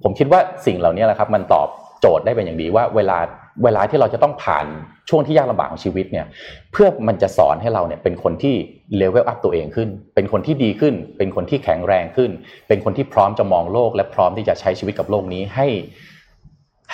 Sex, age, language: male, 30-49, Thai